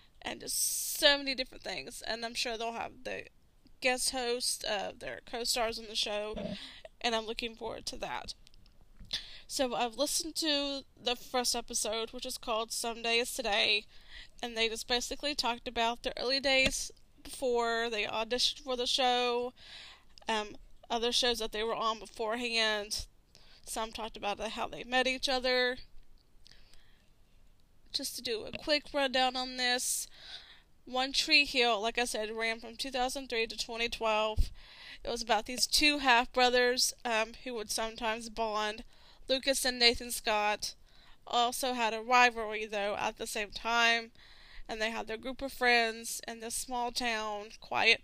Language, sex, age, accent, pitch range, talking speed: English, female, 10-29, American, 225-255 Hz, 155 wpm